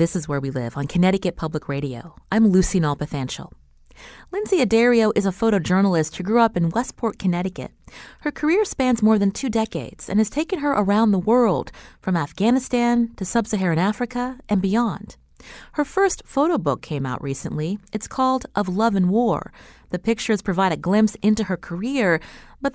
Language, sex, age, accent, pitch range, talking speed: English, female, 30-49, American, 155-215 Hz, 175 wpm